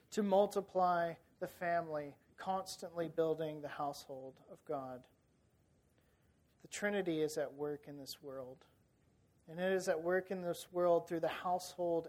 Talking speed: 145 wpm